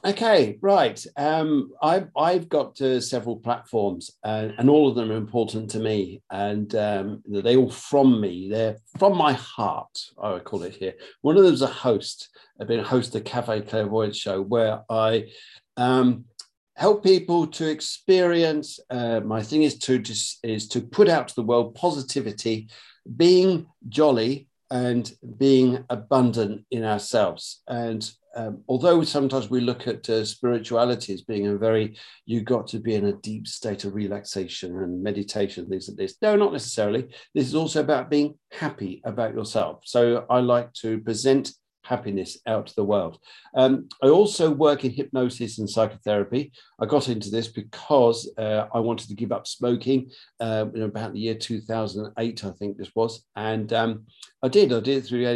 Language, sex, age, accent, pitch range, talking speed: Spanish, male, 50-69, British, 110-135 Hz, 175 wpm